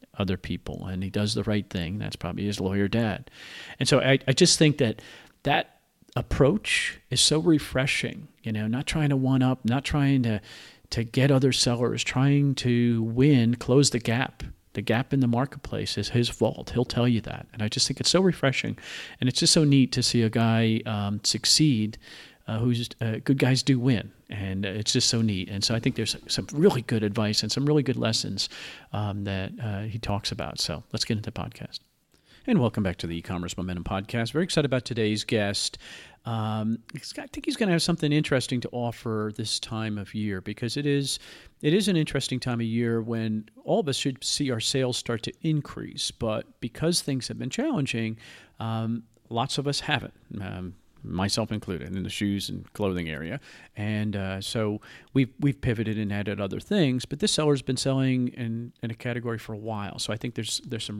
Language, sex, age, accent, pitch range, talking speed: English, male, 40-59, American, 105-130 Hz, 210 wpm